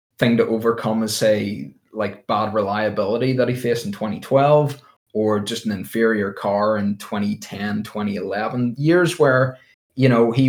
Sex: male